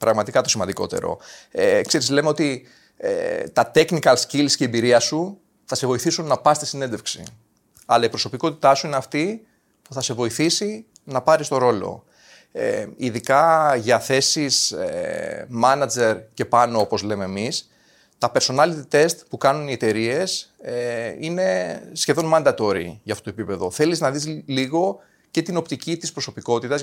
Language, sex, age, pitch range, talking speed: Greek, male, 30-49, 120-165 Hz, 160 wpm